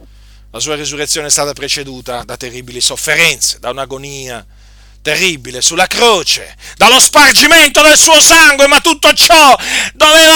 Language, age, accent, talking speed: Italian, 40-59, native, 135 wpm